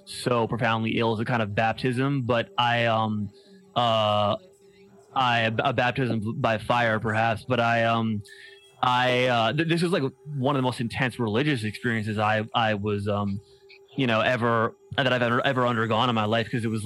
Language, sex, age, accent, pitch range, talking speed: English, male, 20-39, American, 115-135 Hz, 180 wpm